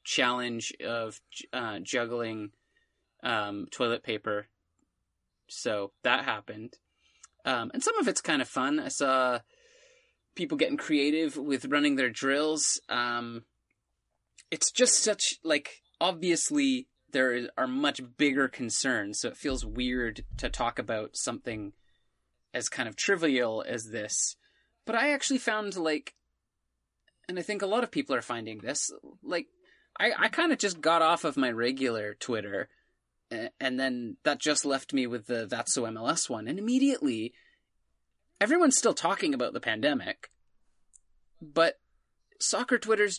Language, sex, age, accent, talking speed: English, male, 20-39, American, 145 wpm